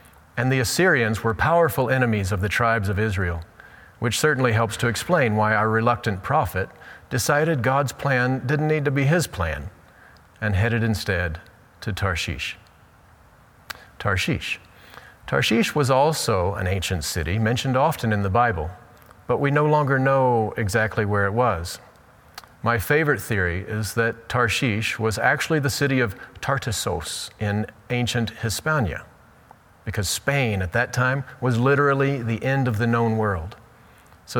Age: 40-59